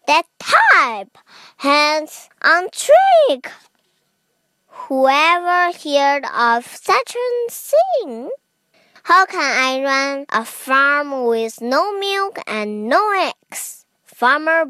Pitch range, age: 240-310 Hz, 20-39